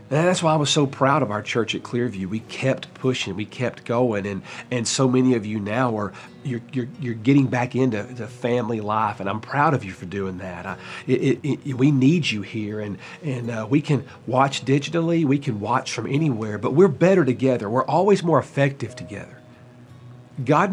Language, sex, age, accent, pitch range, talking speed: English, male, 40-59, American, 105-135 Hz, 205 wpm